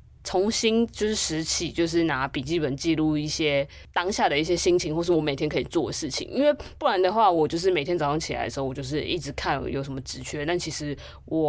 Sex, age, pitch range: female, 20-39, 145-185 Hz